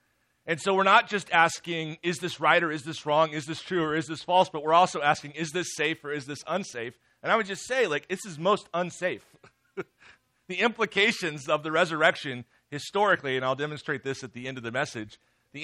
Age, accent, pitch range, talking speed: 40-59, American, 130-170 Hz, 225 wpm